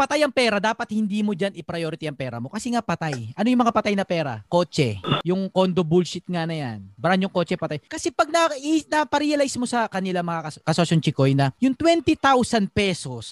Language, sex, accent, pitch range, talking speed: Filipino, male, native, 180-275 Hz, 205 wpm